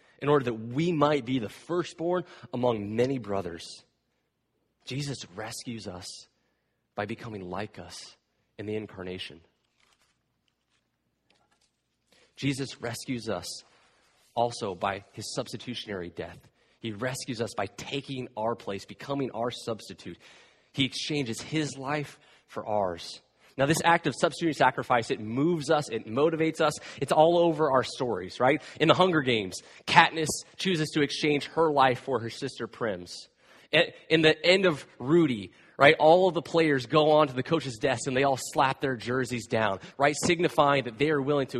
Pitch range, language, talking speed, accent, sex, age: 115-155 Hz, English, 155 wpm, American, male, 30-49